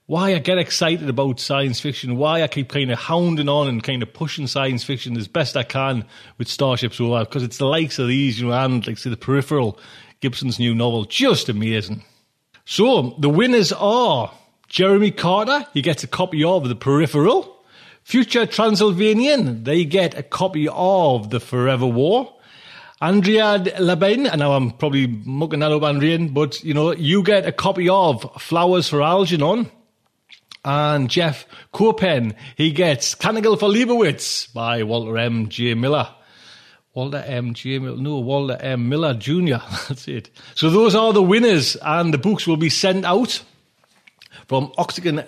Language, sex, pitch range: English, male, 130-185 Hz